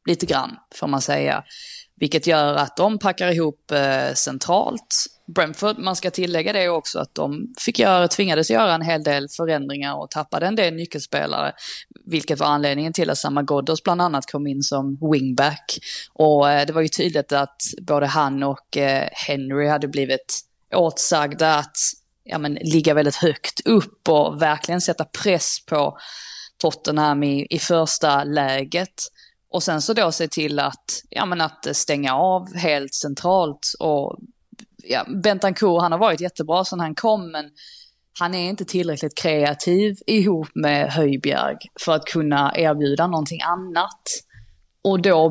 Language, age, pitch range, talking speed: Swedish, 20-39, 145-180 Hz, 160 wpm